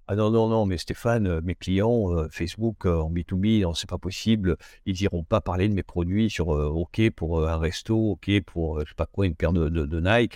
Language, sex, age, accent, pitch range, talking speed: French, male, 60-79, French, 85-110 Hz, 250 wpm